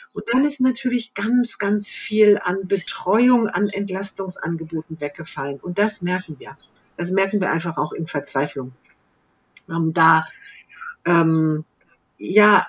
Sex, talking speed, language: female, 130 wpm, German